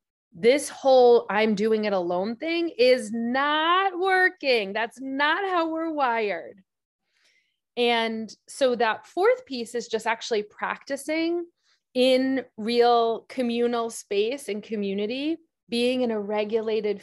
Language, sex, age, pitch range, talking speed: English, female, 30-49, 210-280 Hz, 120 wpm